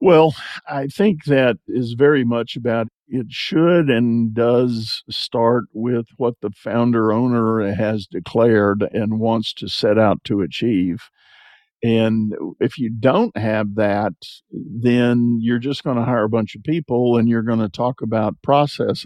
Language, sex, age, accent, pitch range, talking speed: English, male, 50-69, American, 110-125 Hz, 155 wpm